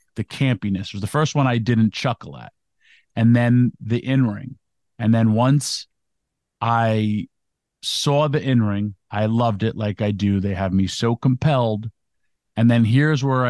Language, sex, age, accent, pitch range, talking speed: English, male, 50-69, American, 105-130 Hz, 160 wpm